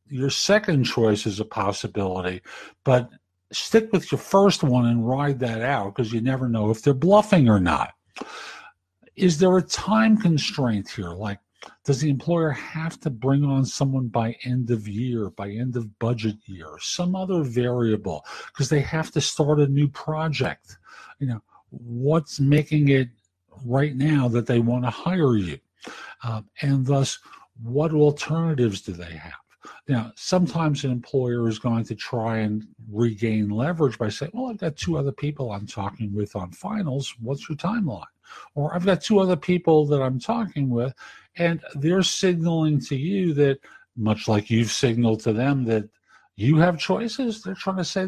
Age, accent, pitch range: 50-69, American, 115-160 Hz